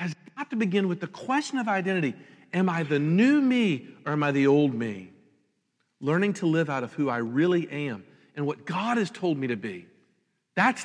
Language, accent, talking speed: English, American, 205 wpm